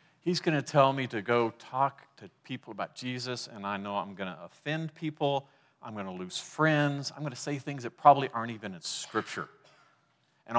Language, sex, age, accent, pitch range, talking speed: English, male, 50-69, American, 110-150 Hz, 210 wpm